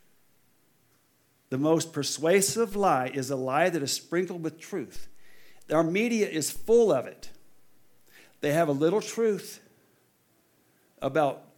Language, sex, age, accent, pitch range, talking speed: English, male, 60-79, American, 145-200 Hz, 125 wpm